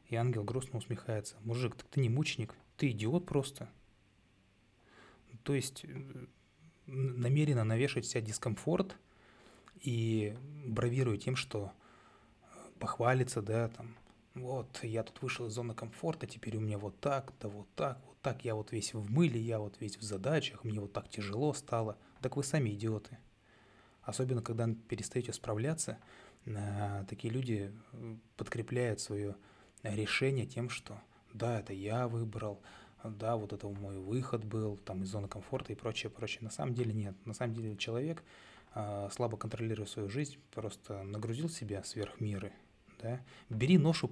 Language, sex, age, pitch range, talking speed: Russian, male, 20-39, 105-125 Hz, 150 wpm